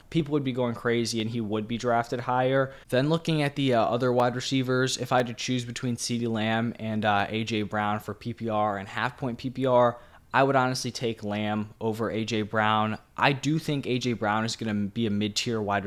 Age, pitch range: 20-39, 110-125 Hz